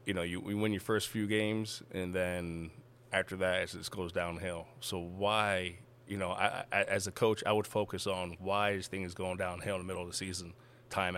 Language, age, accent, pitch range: English, 20-39, American, 95-115 Hz